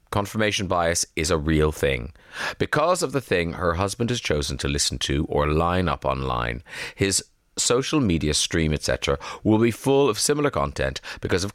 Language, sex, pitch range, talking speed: English, male, 80-110 Hz, 175 wpm